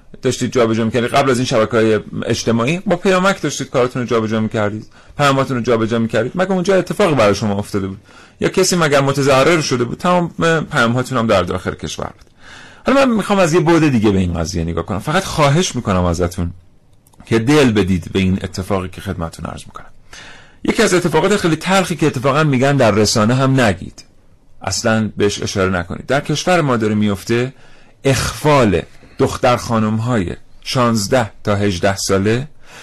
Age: 40-59